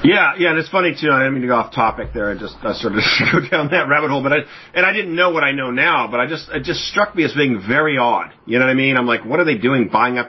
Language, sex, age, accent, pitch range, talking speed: English, male, 40-59, American, 110-130 Hz, 340 wpm